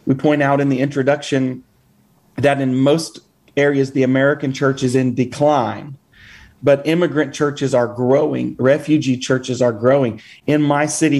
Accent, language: American, English